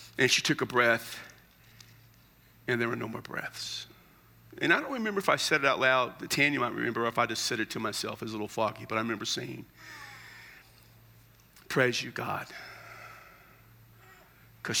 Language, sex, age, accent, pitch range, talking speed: English, male, 50-69, American, 115-160 Hz, 180 wpm